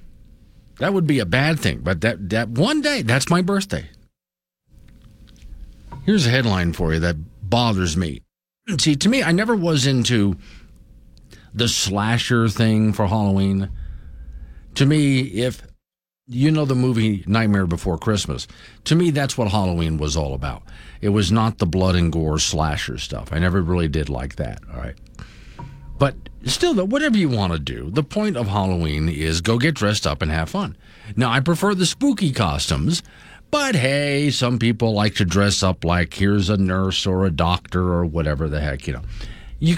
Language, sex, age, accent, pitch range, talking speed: English, male, 50-69, American, 85-135 Hz, 175 wpm